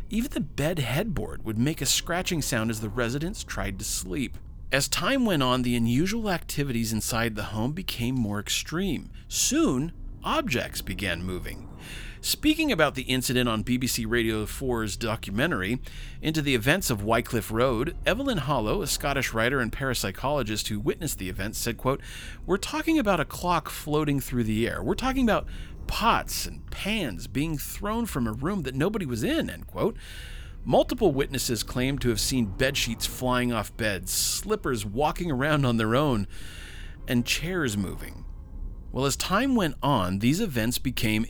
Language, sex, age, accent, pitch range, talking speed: English, male, 40-59, American, 105-145 Hz, 165 wpm